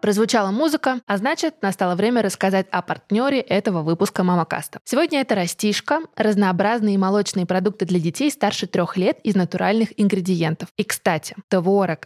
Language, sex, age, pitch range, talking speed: Russian, female, 20-39, 175-215 Hz, 145 wpm